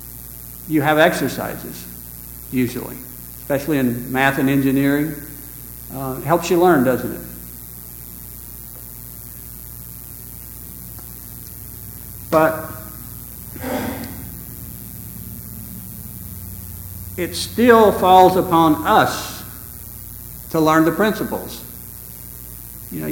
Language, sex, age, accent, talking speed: English, male, 60-79, American, 75 wpm